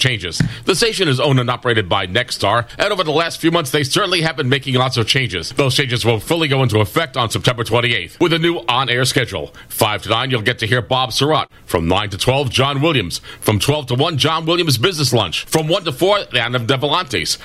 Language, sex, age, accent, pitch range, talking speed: English, male, 40-59, American, 115-150 Hz, 235 wpm